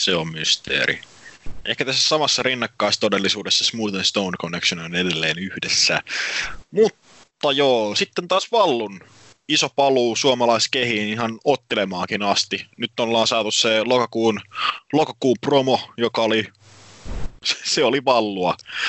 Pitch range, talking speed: 95-115 Hz, 115 wpm